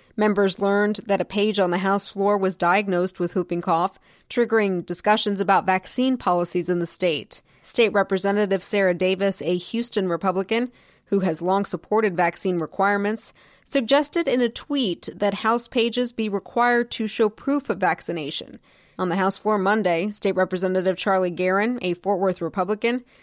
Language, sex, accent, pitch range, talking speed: English, female, American, 185-225 Hz, 160 wpm